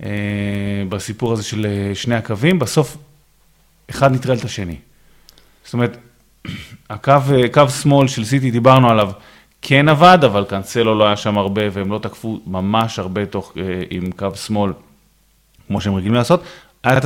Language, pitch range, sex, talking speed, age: Hebrew, 105-135 Hz, male, 150 wpm, 30-49